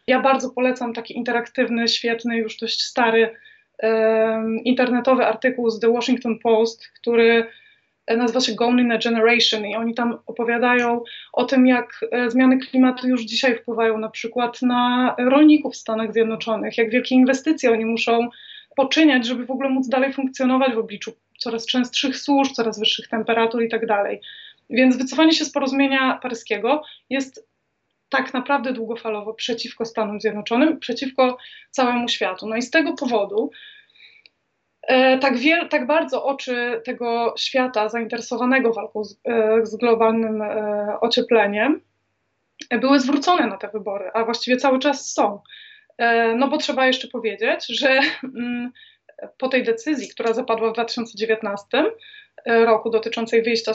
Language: Polish